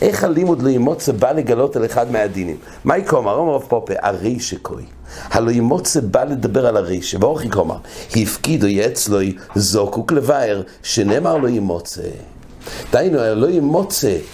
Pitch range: 105-140 Hz